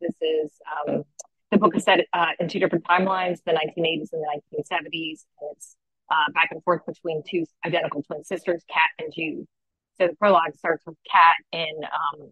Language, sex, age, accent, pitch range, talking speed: English, female, 30-49, American, 160-190 Hz, 190 wpm